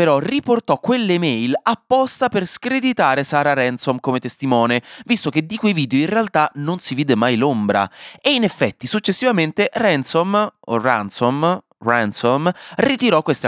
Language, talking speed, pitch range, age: Italian, 145 wpm, 120-195 Hz, 20-39